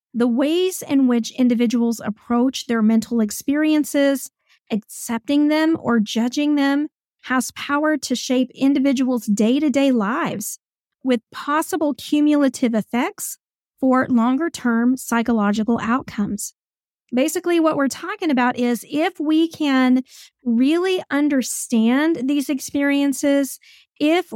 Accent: American